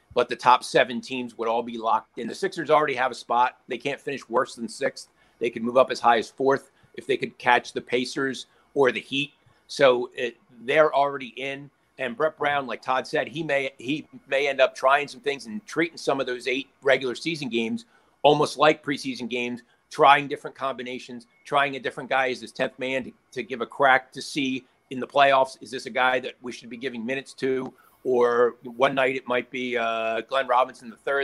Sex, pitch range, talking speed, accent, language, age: male, 115-135 Hz, 215 wpm, American, English, 50-69